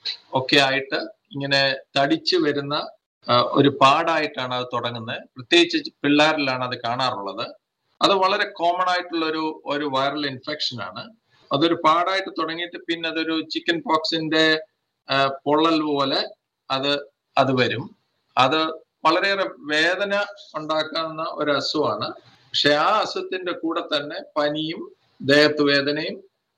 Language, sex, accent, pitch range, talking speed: Malayalam, male, native, 140-165 Hz, 105 wpm